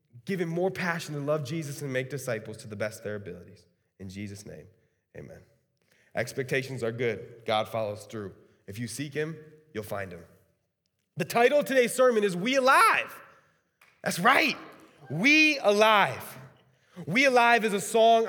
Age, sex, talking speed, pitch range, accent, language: 20-39, male, 165 wpm, 150-200 Hz, American, English